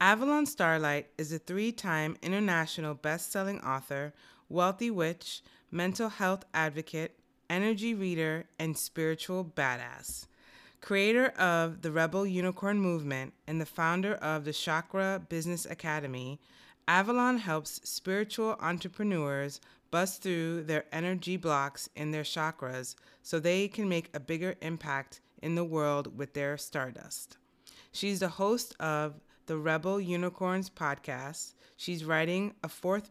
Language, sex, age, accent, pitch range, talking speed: English, female, 30-49, American, 150-185 Hz, 125 wpm